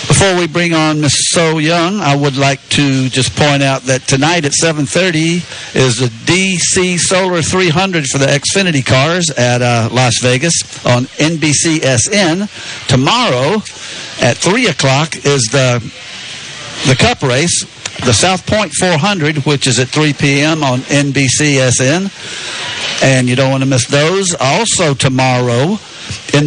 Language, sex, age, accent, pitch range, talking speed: English, male, 60-79, American, 130-170 Hz, 145 wpm